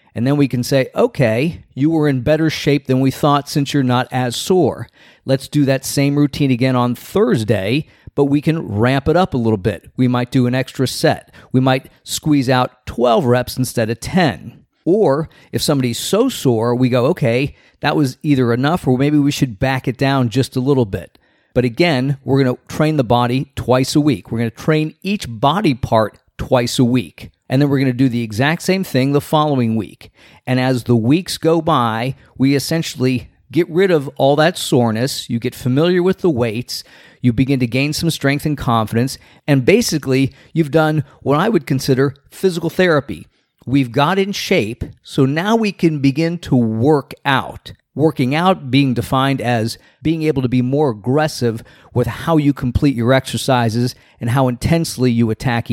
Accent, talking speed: American, 195 wpm